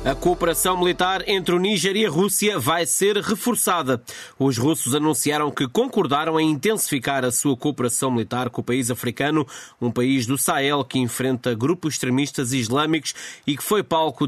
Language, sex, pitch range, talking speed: Portuguese, male, 125-155 Hz, 170 wpm